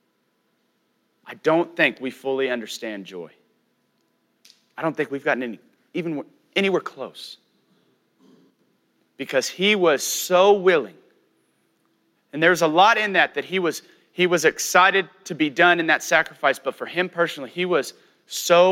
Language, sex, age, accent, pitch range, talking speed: English, male, 30-49, American, 145-180 Hz, 145 wpm